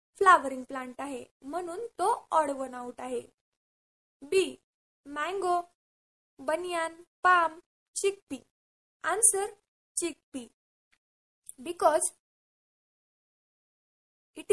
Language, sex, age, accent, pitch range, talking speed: Marathi, female, 20-39, native, 305-395 Hz, 60 wpm